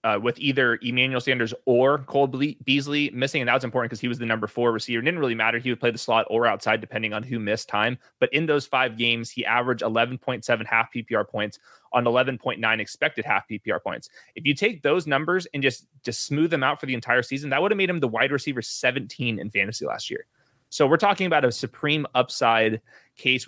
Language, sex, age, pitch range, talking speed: English, male, 20-39, 115-135 Hz, 225 wpm